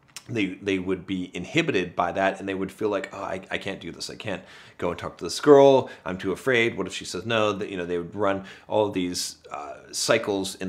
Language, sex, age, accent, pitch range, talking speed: English, male, 30-49, American, 95-135 Hz, 260 wpm